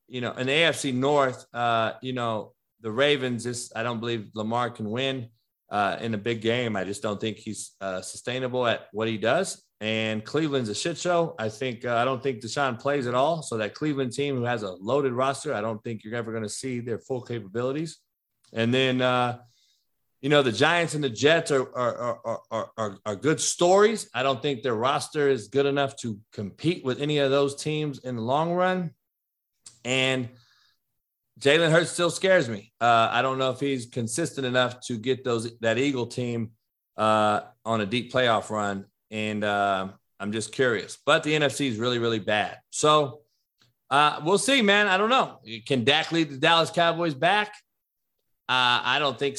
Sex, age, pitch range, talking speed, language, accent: male, 30-49, 115-145 Hz, 200 wpm, English, American